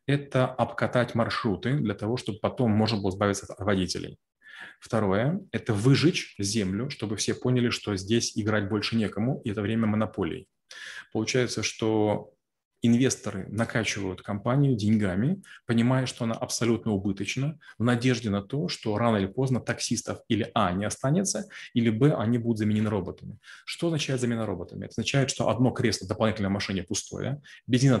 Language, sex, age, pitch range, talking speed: Russian, male, 30-49, 105-125 Hz, 150 wpm